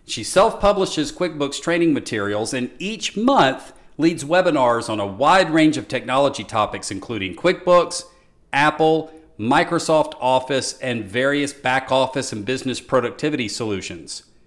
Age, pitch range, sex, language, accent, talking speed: 50-69, 110-155 Hz, male, English, American, 125 wpm